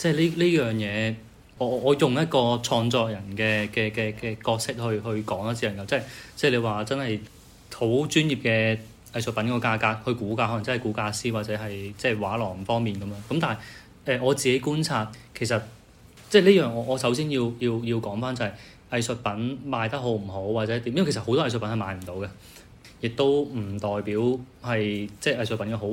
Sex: male